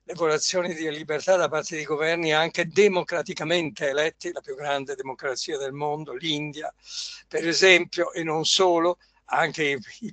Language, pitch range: Italian, 155-185 Hz